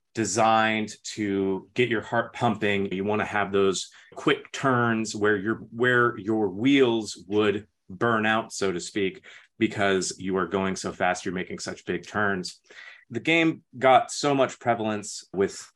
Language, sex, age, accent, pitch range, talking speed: English, male, 30-49, American, 100-120 Hz, 155 wpm